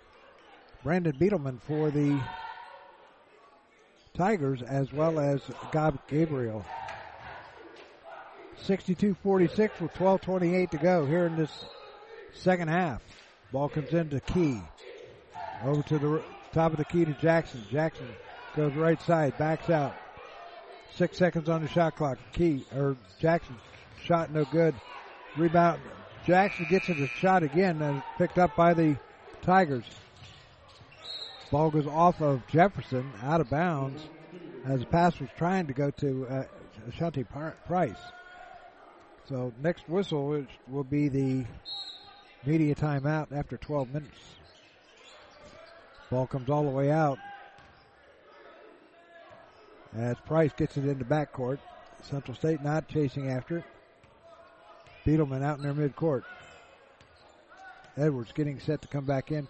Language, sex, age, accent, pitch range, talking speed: English, male, 50-69, American, 135-175 Hz, 125 wpm